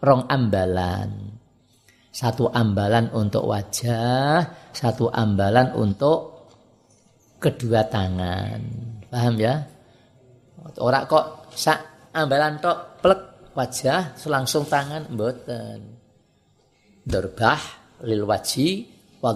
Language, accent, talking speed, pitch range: Indonesian, native, 85 wpm, 110-135 Hz